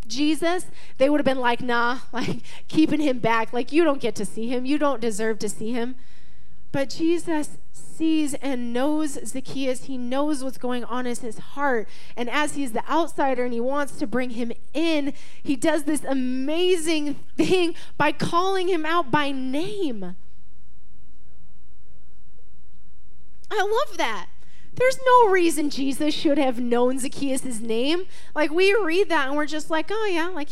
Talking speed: 165 wpm